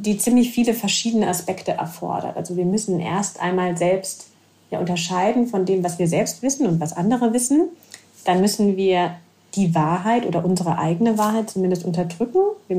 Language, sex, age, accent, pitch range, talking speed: German, female, 30-49, German, 180-215 Hz, 170 wpm